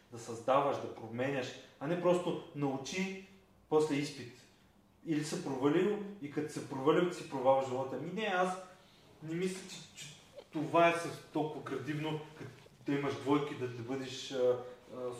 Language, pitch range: Bulgarian, 125-160 Hz